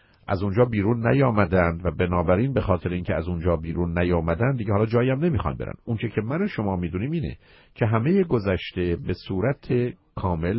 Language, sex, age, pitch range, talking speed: Persian, male, 50-69, 85-115 Hz, 180 wpm